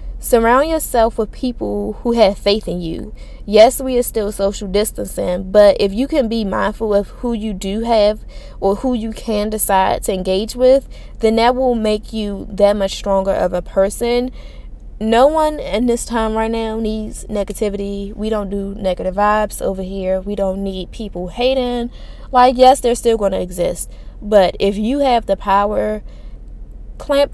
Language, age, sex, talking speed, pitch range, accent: English, 20-39, female, 175 wpm, 195-235 Hz, American